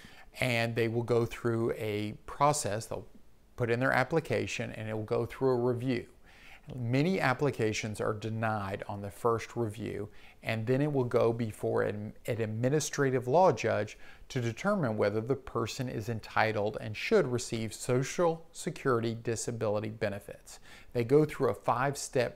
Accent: American